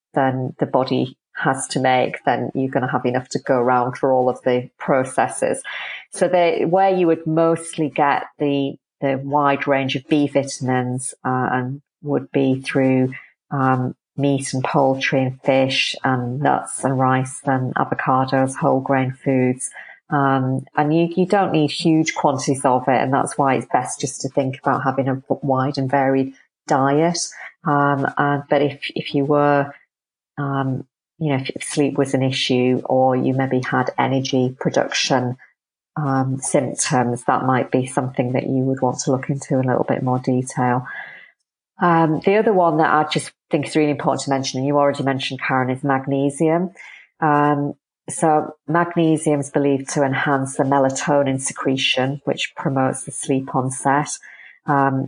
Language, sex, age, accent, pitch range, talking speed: English, female, 40-59, British, 130-145 Hz, 170 wpm